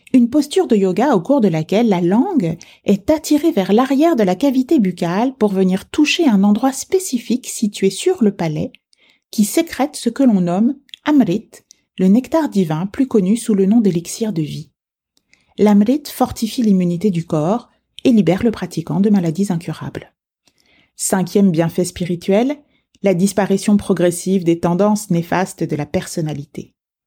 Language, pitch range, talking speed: French, 180-240 Hz, 155 wpm